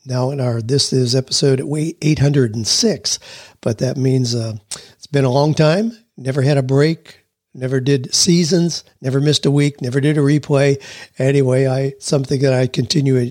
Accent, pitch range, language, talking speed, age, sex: American, 125-150 Hz, English, 165 wpm, 50-69, male